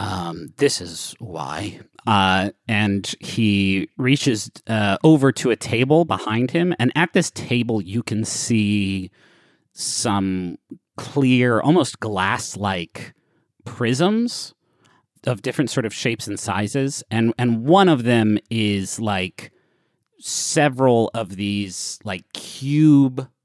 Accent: American